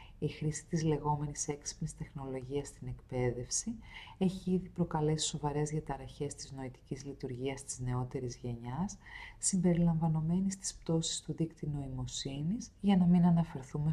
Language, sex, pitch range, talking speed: Greek, female, 130-165 Hz, 125 wpm